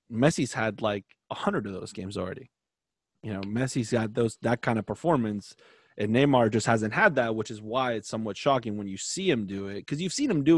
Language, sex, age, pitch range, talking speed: English, male, 30-49, 110-130 Hz, 235 wpm